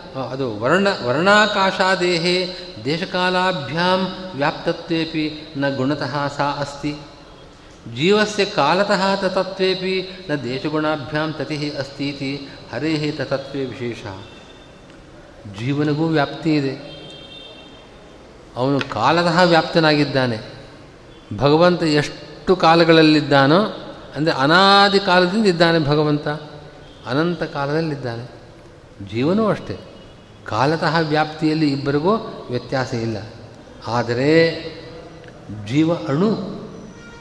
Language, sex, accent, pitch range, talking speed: Kannada, male, native, 135-175 Hz, 70 wpm